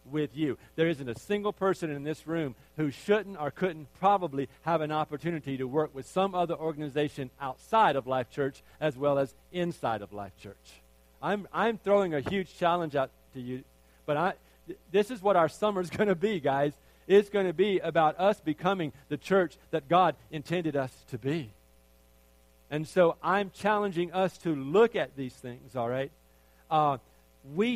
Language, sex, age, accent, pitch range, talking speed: English, male, 50-69, American, 150-200 Hz, 185 wpm